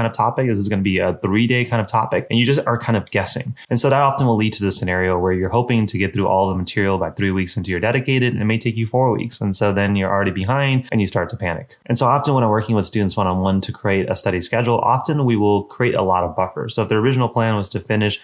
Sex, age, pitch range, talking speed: male, 20-39, 100-120 Hz, 310 wpm